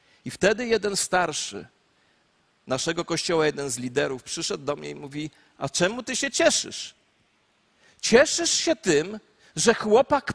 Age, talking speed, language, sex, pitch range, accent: 40-59, 140 wpm, Polish, male, 195-250 Hz, native